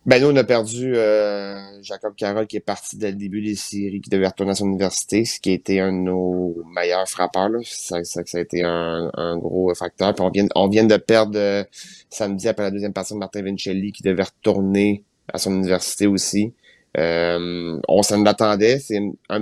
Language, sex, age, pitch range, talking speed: French, male, 30-49, 90-105 Hz, 215 wpm